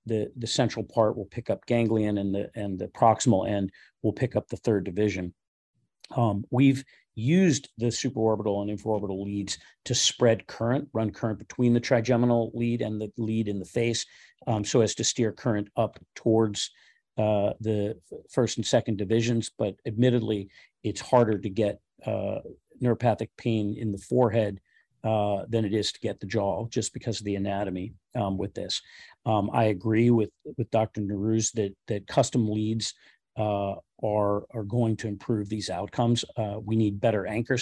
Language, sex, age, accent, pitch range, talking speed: English, male, 40-59, American, 105-120 Hz, 170 wpm